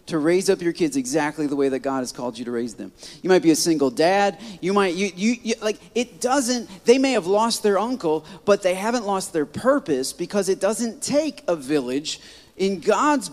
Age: 40-59